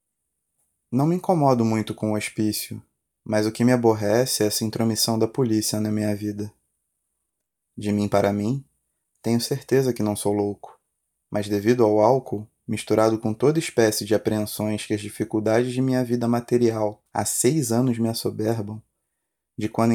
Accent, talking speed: Brazilian, 160 wpm